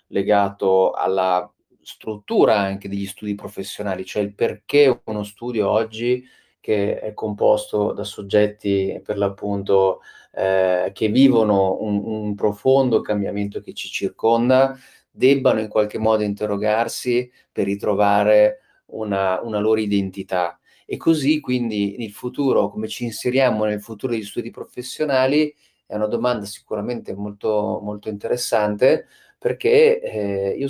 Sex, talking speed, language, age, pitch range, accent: male, 125 wpm, Italian, 30-49, 100-130 Hz, native